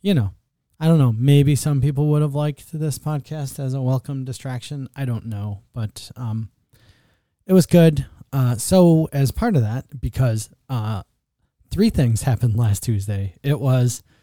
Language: English